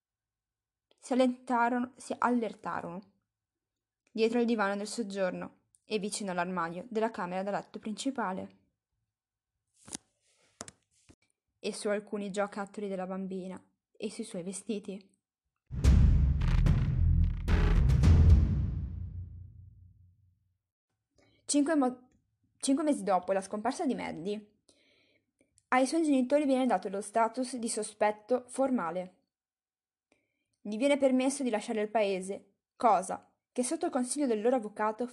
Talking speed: 105 wpm